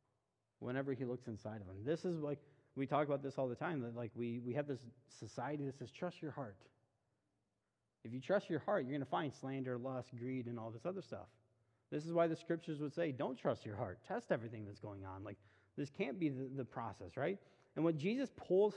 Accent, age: American, 30-49